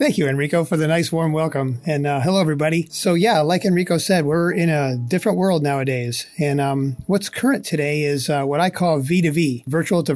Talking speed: 215 wpm